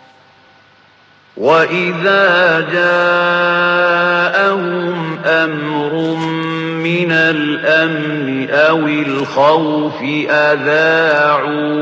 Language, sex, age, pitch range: English, male, 50-69, 150-175 Hz